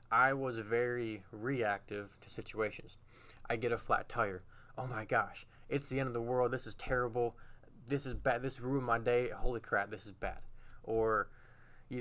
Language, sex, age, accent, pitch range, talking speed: English, male, 20-39, American, 110-130 Hz, 185 wpm